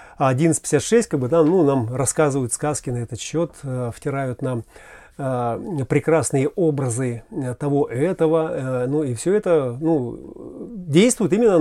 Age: 30-49